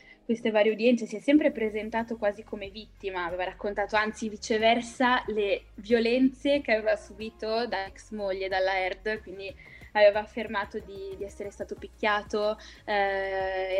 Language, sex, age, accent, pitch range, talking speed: Italian, female, 10-29, native, 190-220 Hz, 145 wpm